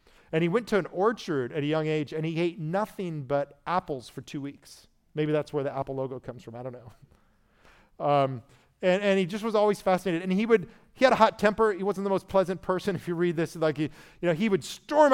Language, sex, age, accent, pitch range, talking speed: English, male, 40-59, American, 135-170 Hz, 250 wpm